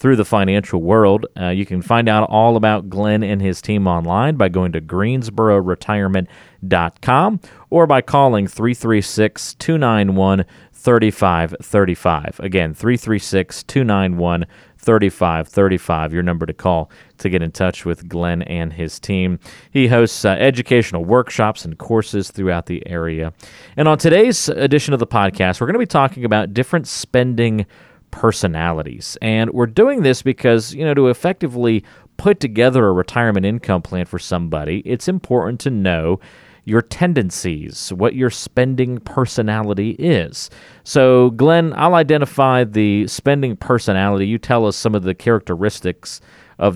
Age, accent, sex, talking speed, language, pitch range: 40-59, American, male, 140 wpm, English, 90-125 Hz